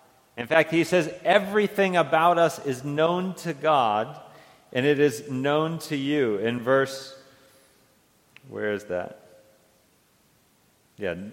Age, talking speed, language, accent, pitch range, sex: 40-59, 120 wpm, English, American, 125-150 Hz, male